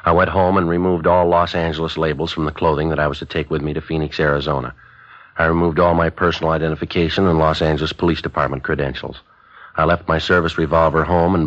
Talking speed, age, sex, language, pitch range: 215 wpm, 50-69, male, English, 80-95 Hz